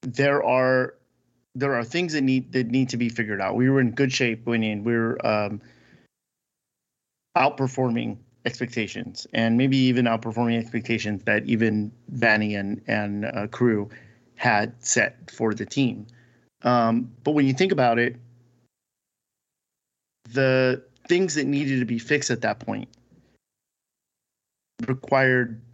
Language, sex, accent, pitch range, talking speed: English, male, American, 115-125 Hz, 140 wpm